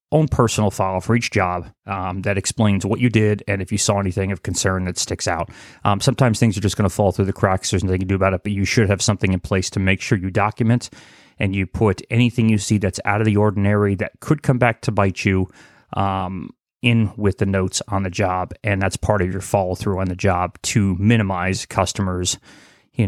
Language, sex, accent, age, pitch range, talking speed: English, male, American, 30-49, 95-110 Hz, 235 wpm